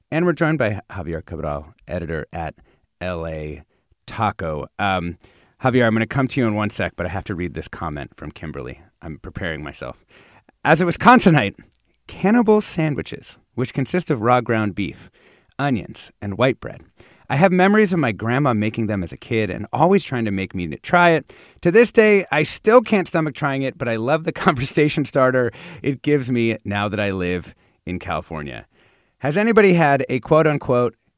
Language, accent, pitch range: English, American, 100-155 Hz